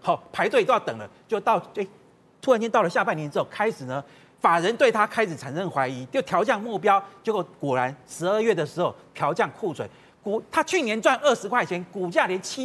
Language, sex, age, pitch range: Chinese, male, 40-59, 185-280 Hz